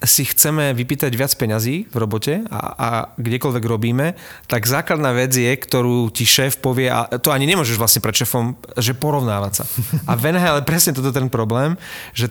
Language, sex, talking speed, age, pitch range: Slovak, male, 180 wpm, 40-59, 120-140 Hz